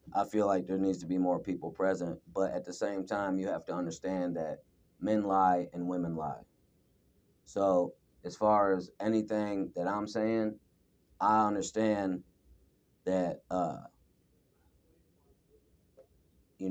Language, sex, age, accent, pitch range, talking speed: English, male, 30-49, American, 85-95 Hz, 135 wpm